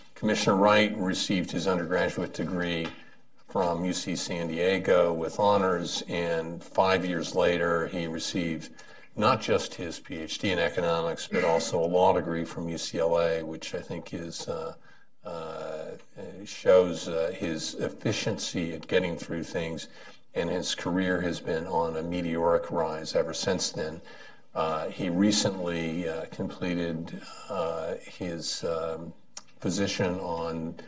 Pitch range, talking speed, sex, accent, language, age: 80-90 Hz, 130 wpm, male, American, English, 50-69